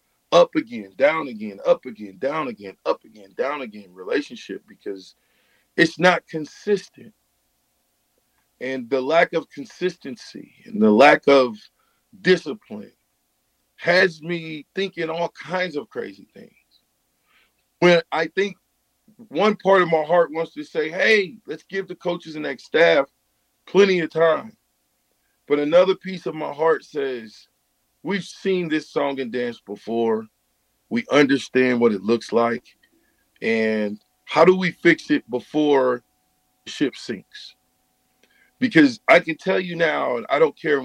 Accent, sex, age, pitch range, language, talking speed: American, male, 40-59, 130-200 Hz, English, 140 wpm